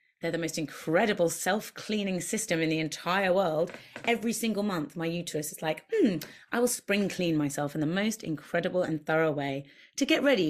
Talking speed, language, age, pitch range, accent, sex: 190 wpm, English, 30-49, 155-195 Hz, British, female